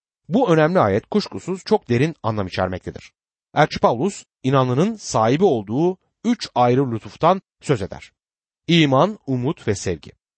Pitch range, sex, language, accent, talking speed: 115-170 Hz, male, Turkish, native, 120 wpm